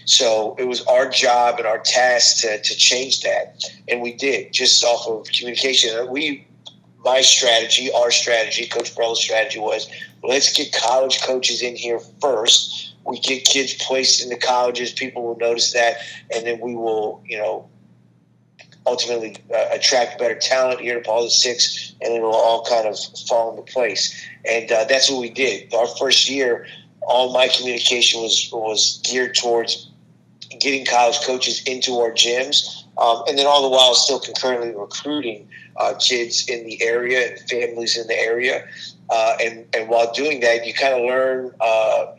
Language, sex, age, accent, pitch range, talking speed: English, male, 30-49, American, 115-130 Hz, 175 wpm